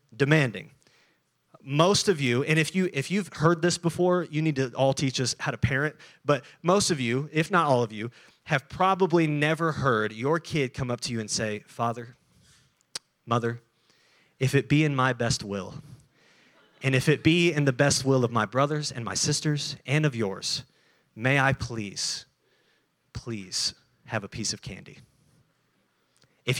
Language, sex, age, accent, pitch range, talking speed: English, male, 30-49, American, 130-180 Hz, 175 wpm